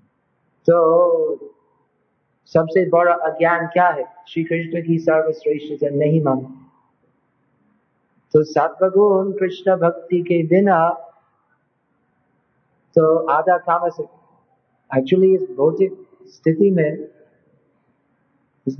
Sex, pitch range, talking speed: male, 155-180 Hz, 90 wpm